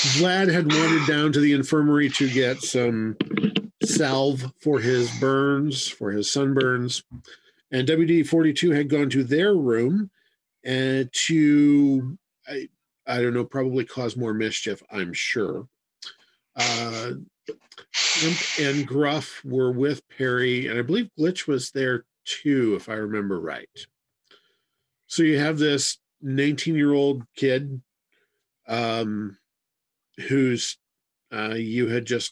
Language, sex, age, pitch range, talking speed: English, male, 50-69, 115-145 Hz, 125 wpm